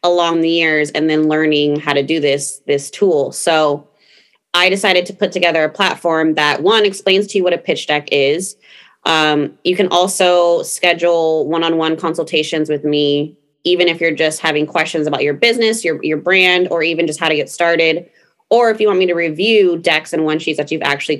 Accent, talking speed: American, 205 wpm